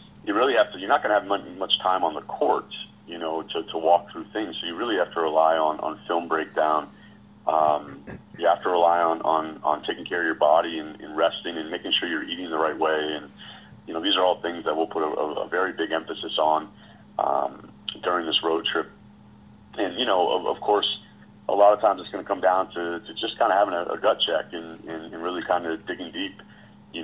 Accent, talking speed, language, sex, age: American, 245 wpm, English, male, 30-49